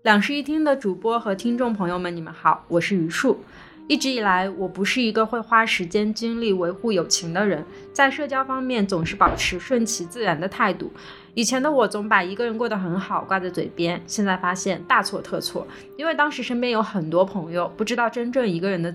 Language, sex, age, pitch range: Chinese, female, 20-39, 180-230 Hz